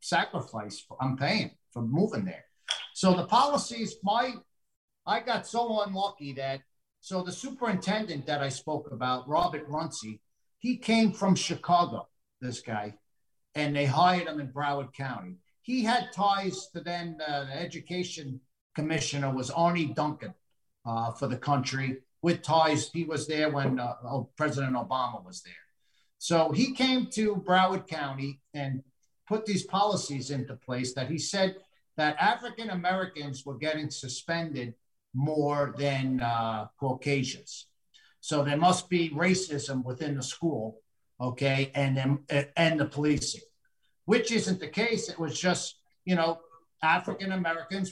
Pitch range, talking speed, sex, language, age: 135-185 Hz, 140 wpm, male, English, 50-69